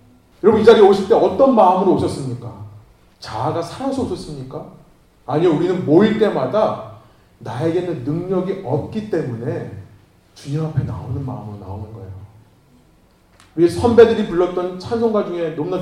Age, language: 30-49, Korean